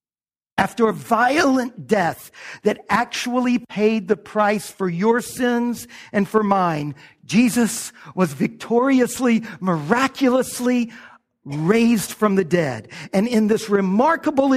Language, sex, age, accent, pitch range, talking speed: English, male, 50-69, American, 185-250 Hz, 110 wpm